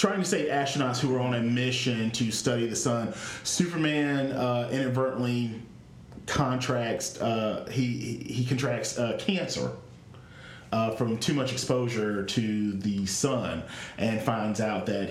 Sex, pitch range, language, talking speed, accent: male, 110-130 Hz, English, 140 wpm, American